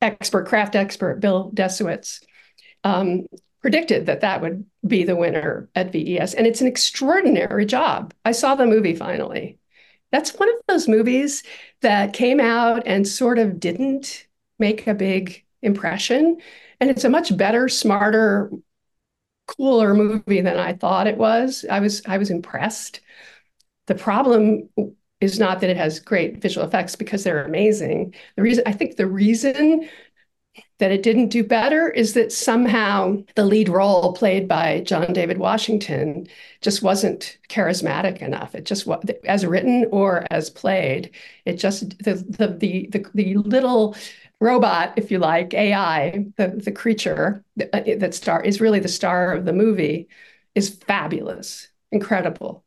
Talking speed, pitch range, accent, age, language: 155 wpm, 190-230 Hz, American, 50-69, English